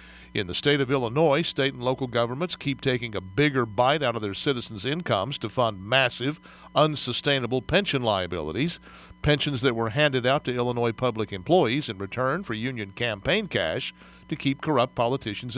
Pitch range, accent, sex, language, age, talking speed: 115-150 Hz, American, male, English, 50-69, 170 wpm